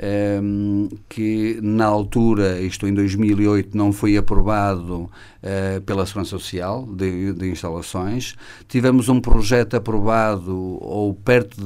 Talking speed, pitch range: 115 wpm, 100-115 Hz